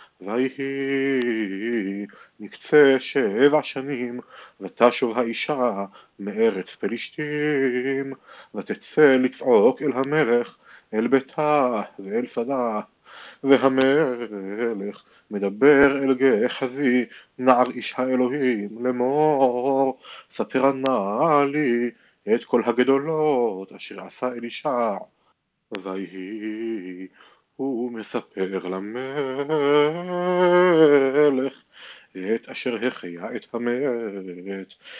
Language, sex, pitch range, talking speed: Hebrew, male, 115-135 Hz, 70 wpm